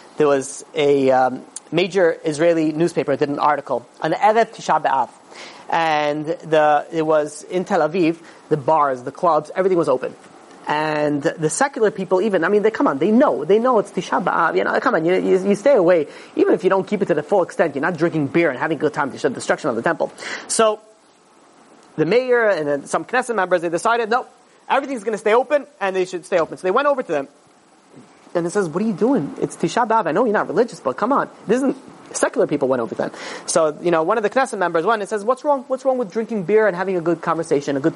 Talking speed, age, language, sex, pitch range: 245 wpm, 30-49, English, male, 160-220 Hz